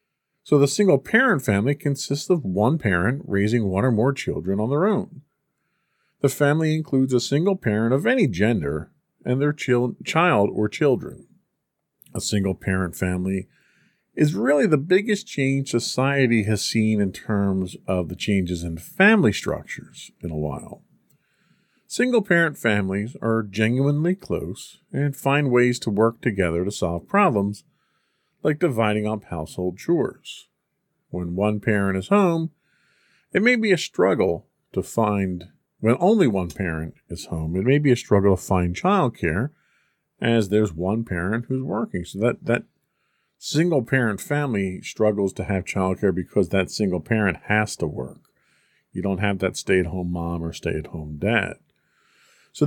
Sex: male